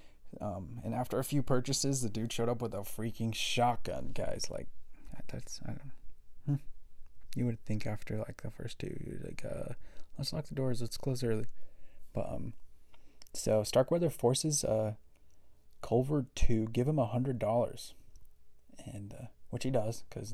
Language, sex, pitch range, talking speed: English, male, 105-120 Hz, 170 wpm